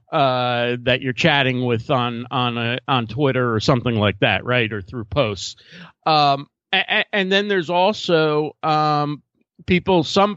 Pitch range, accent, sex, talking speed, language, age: 135-165 Hz, American, male, 160 wpm, English, 50-69